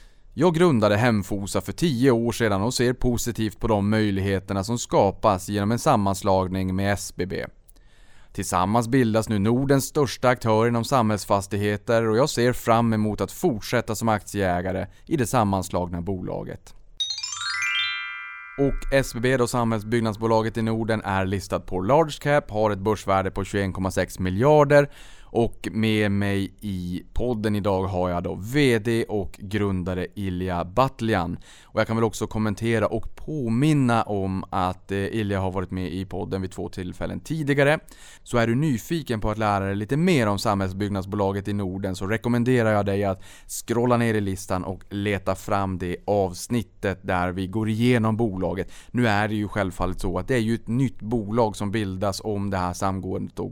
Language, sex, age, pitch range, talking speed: Swedish, male, 20-39, 95-115 Hz, 160 wpm